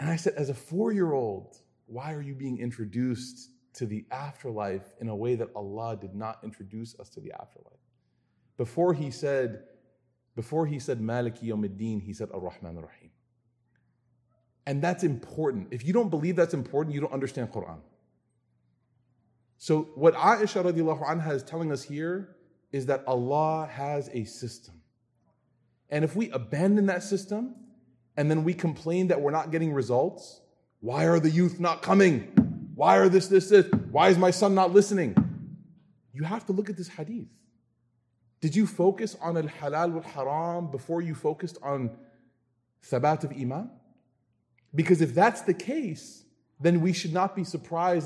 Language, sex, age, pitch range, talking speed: English, male, 30-49, 120-175 Hz, 160 wpm